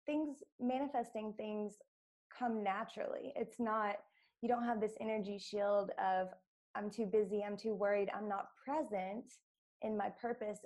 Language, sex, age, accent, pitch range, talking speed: English, female, 20-39, American, 200-240 Hz, 145 wpm